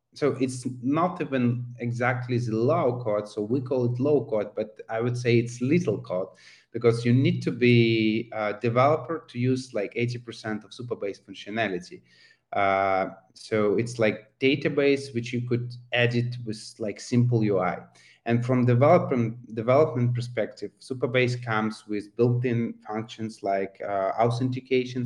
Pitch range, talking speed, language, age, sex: 110-125 Hz, 145 wpm, English, 30-49, male